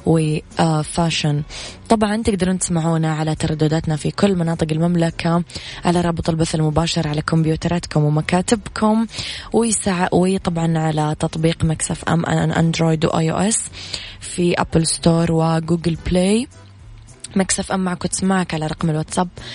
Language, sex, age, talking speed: Arabic, female, 20-39, 135 wpm